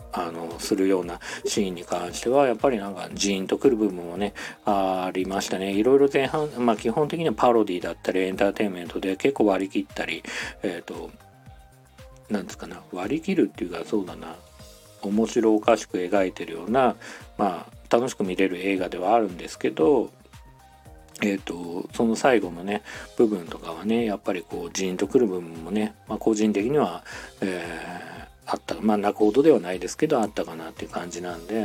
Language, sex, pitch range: Japanese, male, 90-110 Hz